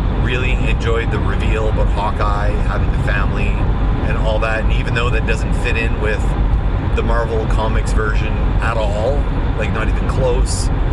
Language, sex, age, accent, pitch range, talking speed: English, male, 30-49, American, 95-110 Hz, 165 wpm